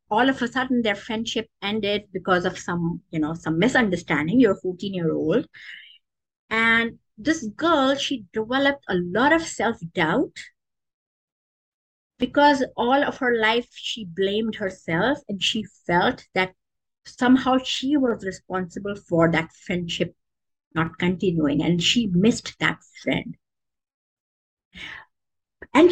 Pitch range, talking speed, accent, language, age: 185-260 Hz, 130 wpm, Indian, English, 50-69